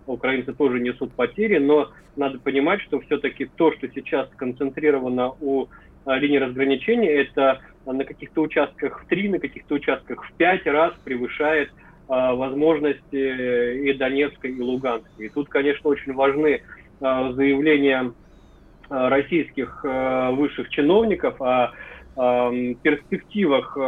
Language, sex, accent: Russian, male, native